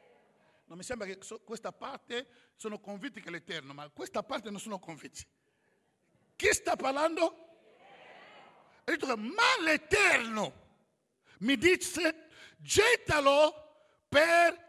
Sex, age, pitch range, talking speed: male, 50-69, 255-340 Hz, 125 wpm